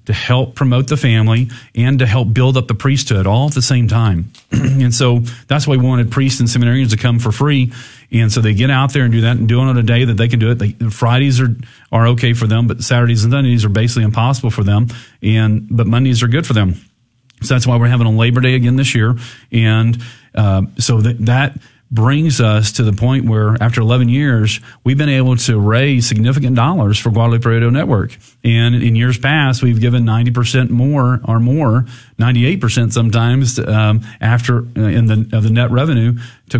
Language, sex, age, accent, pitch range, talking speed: English, male, 40-59, American, 110-130 Hz, 215 wpm